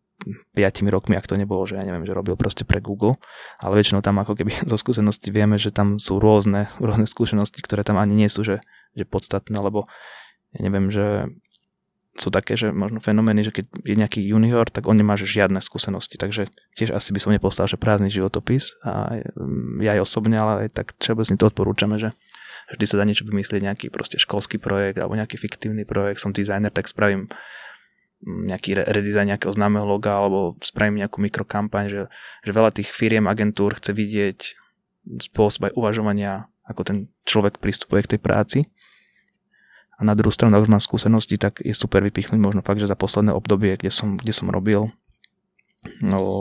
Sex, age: male, 20-39